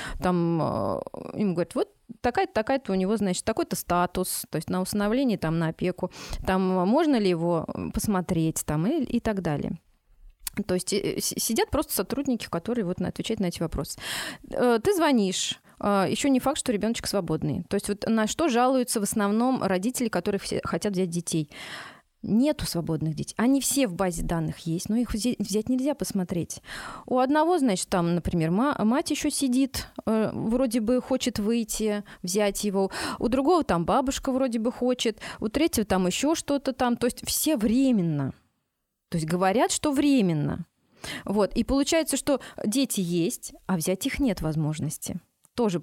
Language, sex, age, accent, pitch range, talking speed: Russian, female, 20-39, native, 180-255 Hz, 160 wpm